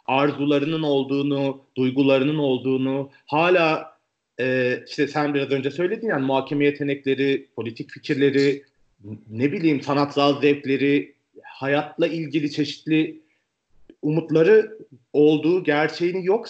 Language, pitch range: Turkish, 135-180 Hz